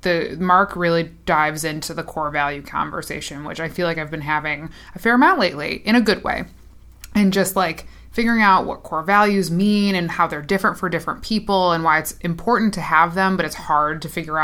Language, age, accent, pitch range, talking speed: English, 20-39, American, 160-195 Hz, 215 wpm